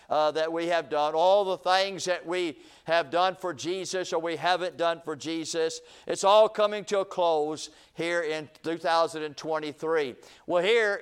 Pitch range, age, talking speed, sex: 165-195 Hz, 50-69, 170 wpm, male